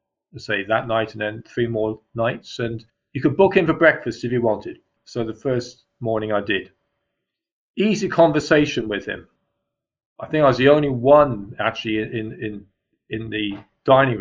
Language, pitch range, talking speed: English, 110-130 Hz, 175 wpm